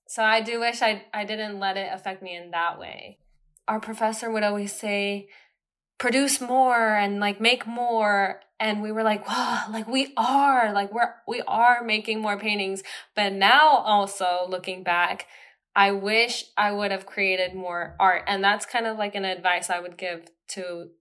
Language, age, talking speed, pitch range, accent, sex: English, 10-29, 185 wpm, 185-215 Hz, American, female